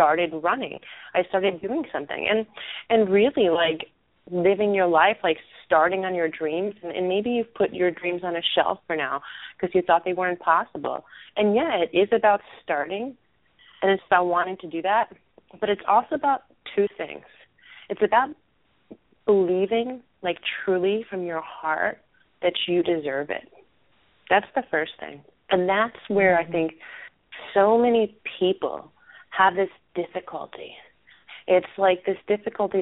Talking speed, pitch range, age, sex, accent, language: 160 wpm, 175-220 Hz, 30-49, female, American, English